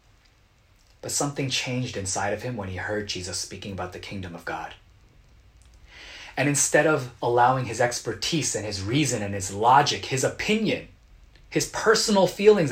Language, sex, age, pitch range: Korean, male, 30-49, 100-155 Hz